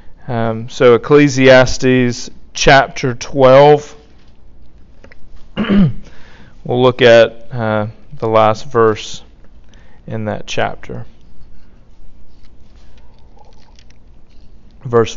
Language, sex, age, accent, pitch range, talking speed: English, male, 40-59, American, 120-170 Hz, 65 wpm